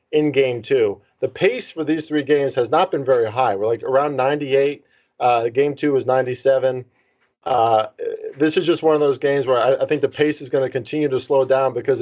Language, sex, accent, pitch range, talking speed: English, male, American, 130-170 Hz, 220 wpm